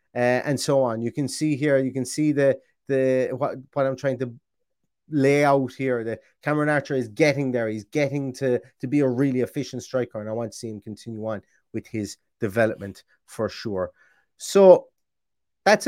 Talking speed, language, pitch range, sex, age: 195 wpm, English, 115-145 Hz, male, 30-49